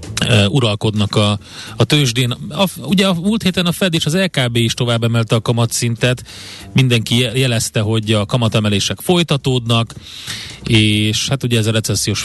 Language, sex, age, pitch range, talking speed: Hungarian, male, 30-49, 105-125 Hz, 155 wpm